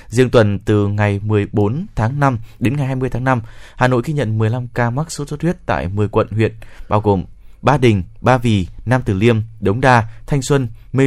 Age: 20-39